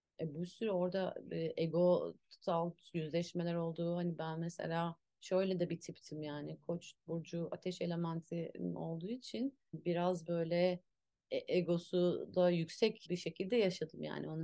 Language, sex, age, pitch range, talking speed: Turkish, female, 30-49, 155-180 Hz, 135 wpm